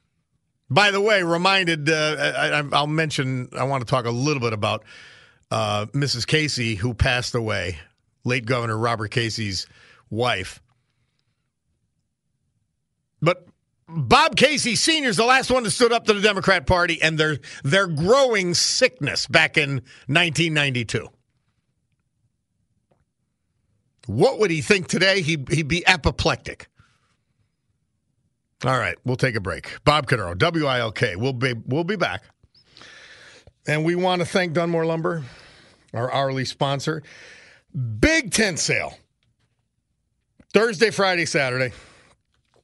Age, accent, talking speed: 50-69, American, 120 wpm